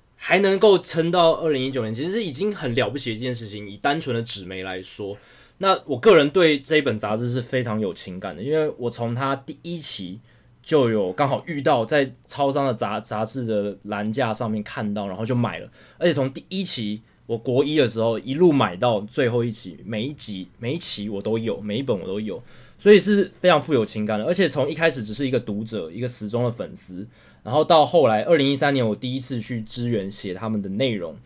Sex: male